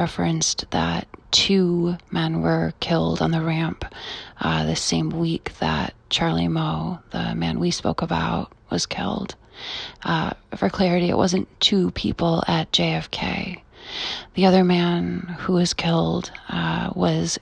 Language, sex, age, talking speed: English, female, 20-39, 140 wpm